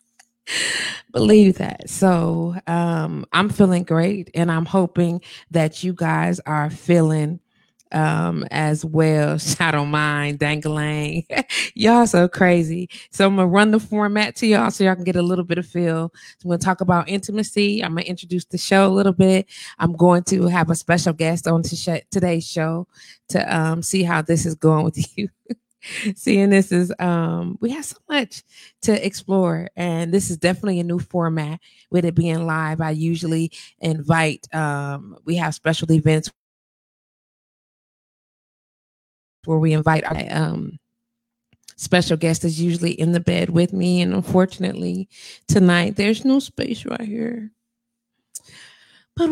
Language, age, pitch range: English, 20-39, 160-195 Hz